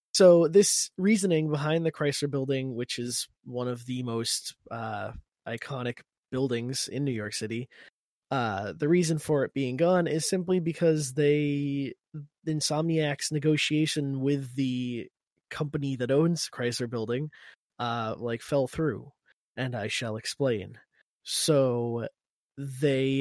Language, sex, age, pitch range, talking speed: English, male, 20-39, 120-155 Hz, 135 wpm